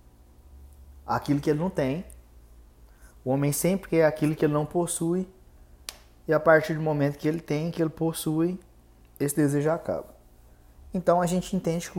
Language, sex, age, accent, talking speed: Portuguese, male, 20-39, Brazilian, 165 wpm